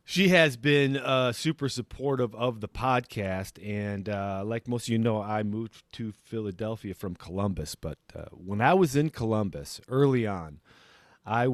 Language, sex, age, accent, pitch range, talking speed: English, male, 40-59, American, 100-140 Hz, 165 wpm